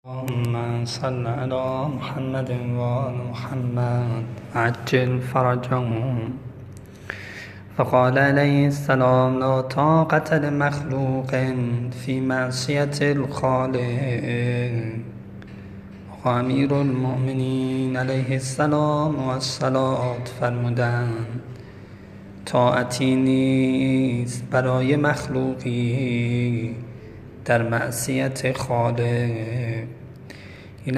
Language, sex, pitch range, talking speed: Persian, male, 120-135 Hz, 60 wpm